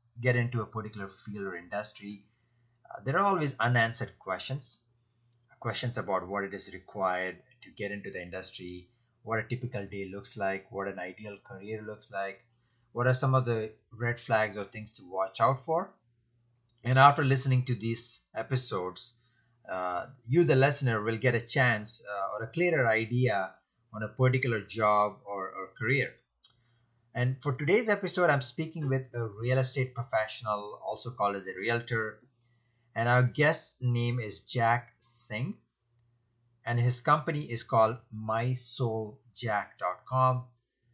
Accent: Indian